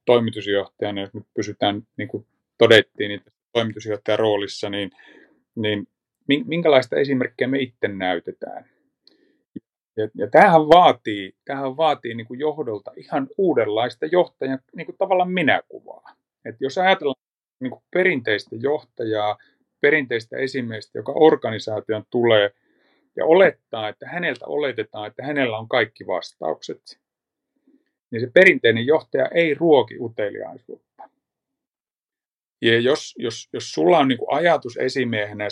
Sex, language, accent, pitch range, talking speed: male, Finnish, native, 105-135 Hz, 115 wpm